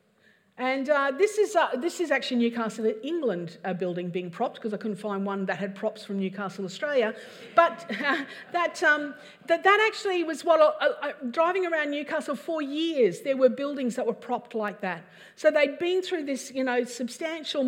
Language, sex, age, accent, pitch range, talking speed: English, female, 50-69, Australian, 230-320 Hz, 195 wpm